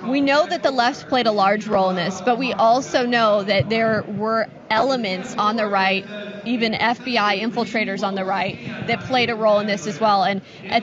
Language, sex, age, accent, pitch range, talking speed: English, female, 20-39, American, 210-265 Hz, 210 wpm